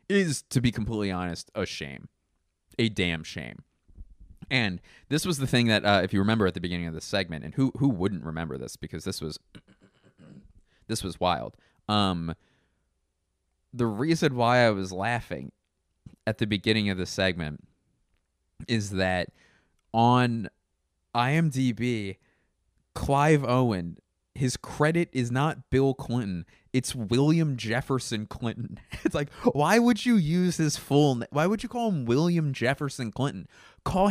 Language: English